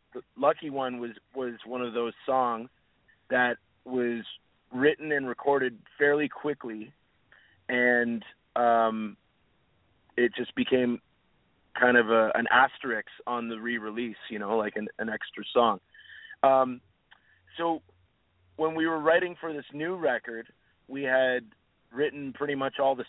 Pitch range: 115-135 Hz